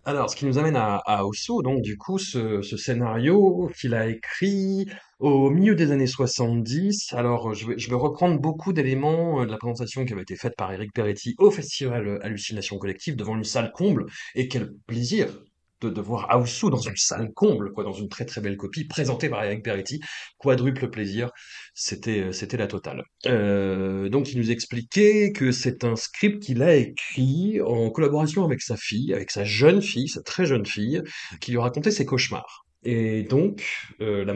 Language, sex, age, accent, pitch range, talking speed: French, male, 30-49, French, 115-160 Hz, 185 wpm